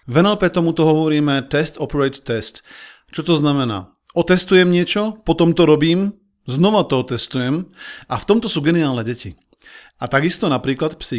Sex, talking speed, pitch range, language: male, 150 wpm, 125-170 Hz, Slovak